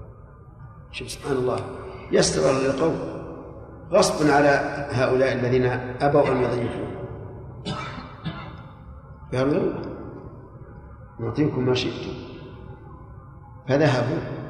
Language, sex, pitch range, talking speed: Arabic, male, 125-150 Hz, 65 wpm